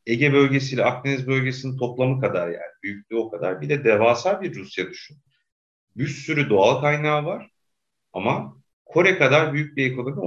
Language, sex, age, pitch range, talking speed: Turkish, male, 40-59, 105-140 Hz, 160 wpm